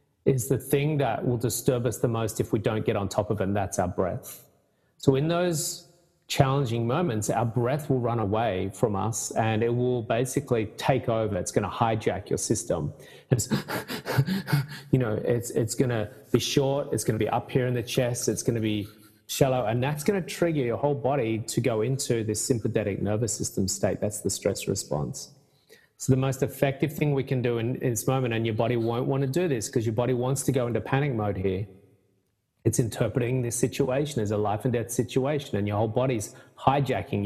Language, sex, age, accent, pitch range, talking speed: English, male, 30-49, Australian, 110-135 Hz, 215 wpm